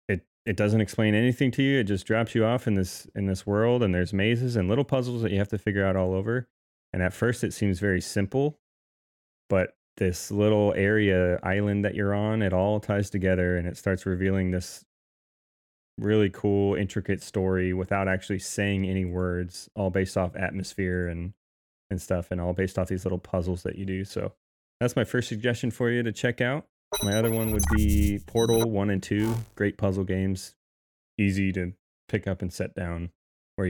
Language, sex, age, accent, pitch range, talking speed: English, male, 30-49, American, 90-105 Hz, 195 wpm